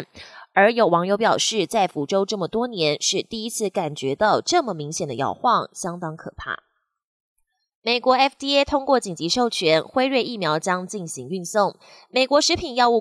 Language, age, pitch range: Chinese, 20-39, 170-250 Hz